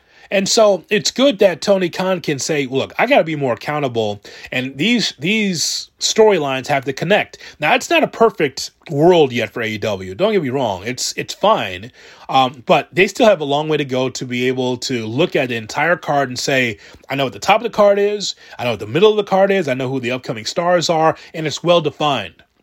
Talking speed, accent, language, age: 235 wpm, American, English, 30-49